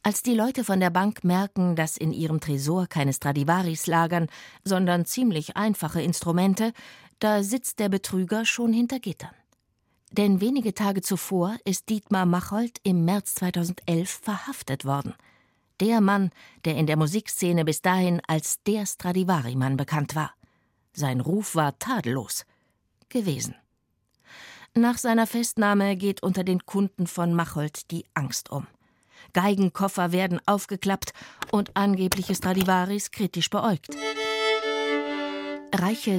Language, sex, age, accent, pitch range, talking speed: German, female, 50-69, German, 170-205 Hz, 125 wpm